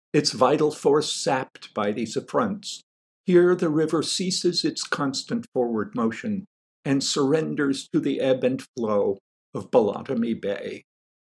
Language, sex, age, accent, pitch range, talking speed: English, male, 50-69, American, 105-150 Hz, 135 wpm